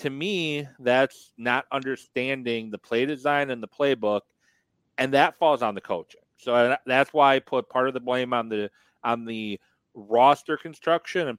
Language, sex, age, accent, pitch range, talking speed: English, male, 40-59, American, 115-150 Hz, 175 wpm